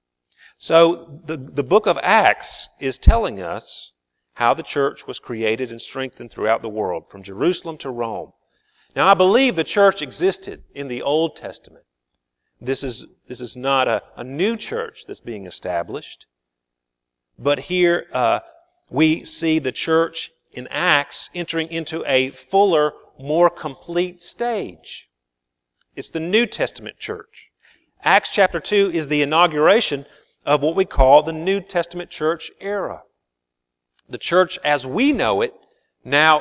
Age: 40-59